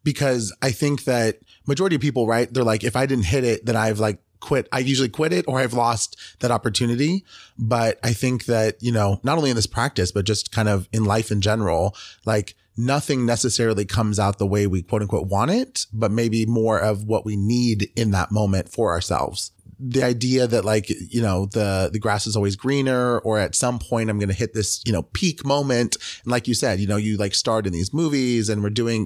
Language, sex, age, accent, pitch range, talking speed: English, male, 30-49, American, 100-120 Hz, 230 wpm